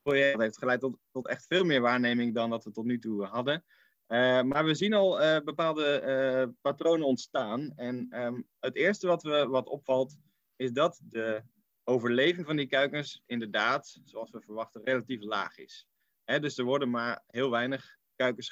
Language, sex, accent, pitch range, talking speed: Dutch, male, Dutch, 115-145 Hz, 180 wpm